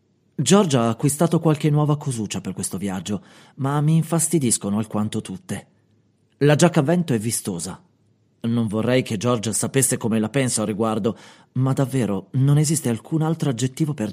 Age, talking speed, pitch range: 30-49, 160 wpm, 110-150 Hz